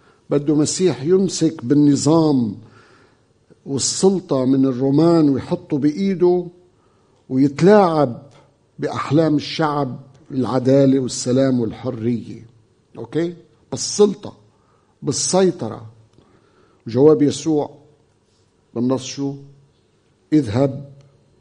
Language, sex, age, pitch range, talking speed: Arabic, male, 50-69, 115-155 Hz, 60 wpm